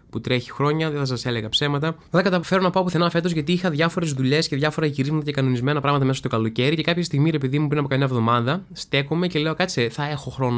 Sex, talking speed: male, 250 wpm